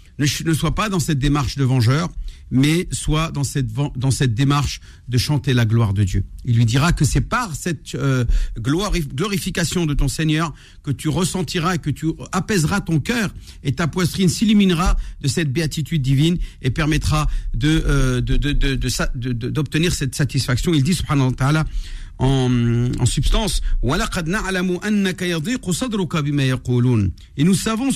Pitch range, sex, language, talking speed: 125-175 Hz, male, French, 160 wpm